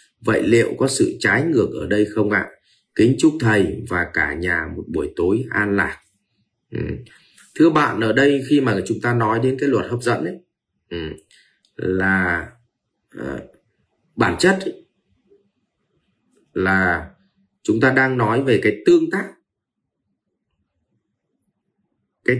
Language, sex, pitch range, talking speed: Vietnamese, male, 105-150 Hz, 140 wpm